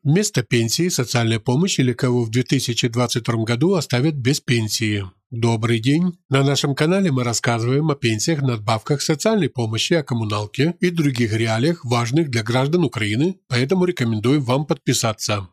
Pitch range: 120-150 Hz